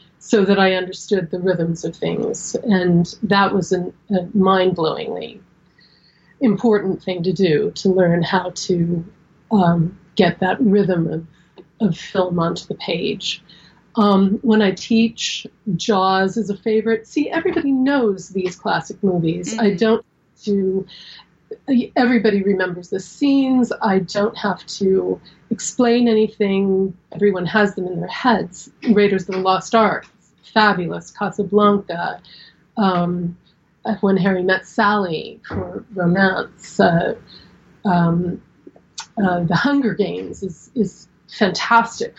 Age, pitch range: 30-49, 180-215 Hz